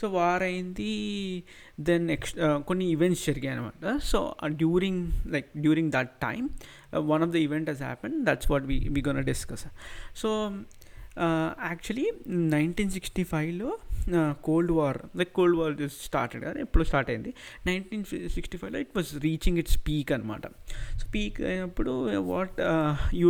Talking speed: 145 wpm